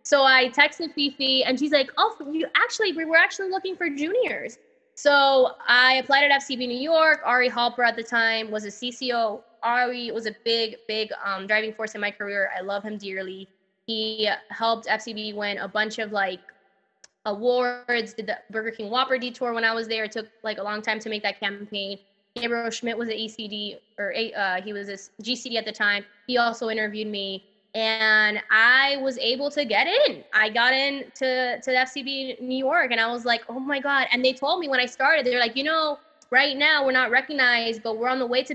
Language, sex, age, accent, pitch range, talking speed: English, female, 10-29, American, 215-265 Hz, 215 wpm